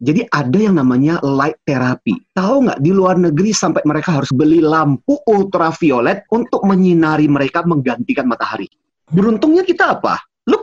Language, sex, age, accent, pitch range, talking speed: Indonesian, male, 30-49, native, 135-195 Hz, 145 wpm